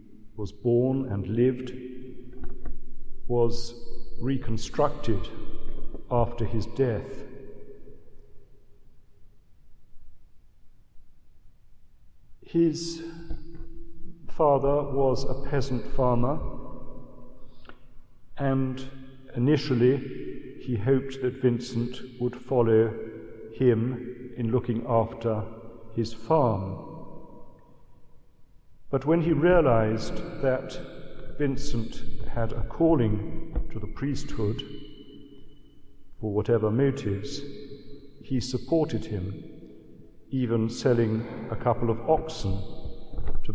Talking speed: 75 wpm